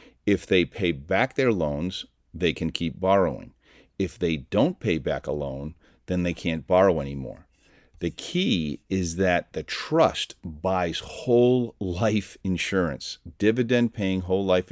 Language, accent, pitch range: English, American, 80-100 Hz